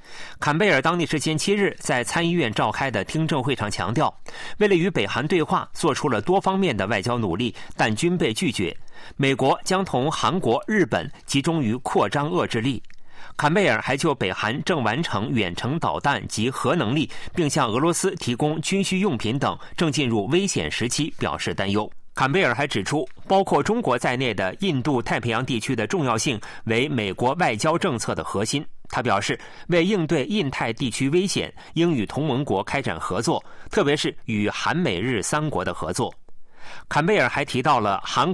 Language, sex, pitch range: Chinese, male, 115-170 Hz